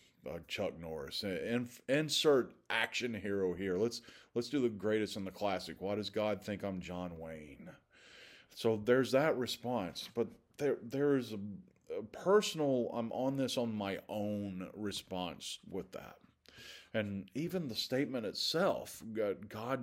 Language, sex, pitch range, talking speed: English, male, 95-130 Hz, 145 wpm